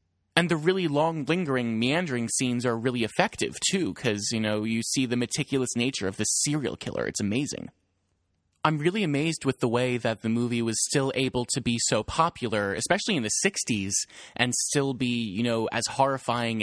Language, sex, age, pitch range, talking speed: English, male, 20-39, 110-145 Hz, 190 wpm